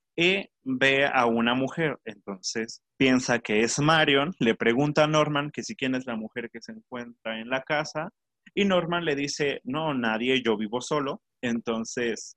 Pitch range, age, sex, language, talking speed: 115-150 Hz, 30-49, male, Spanish, 175 wpm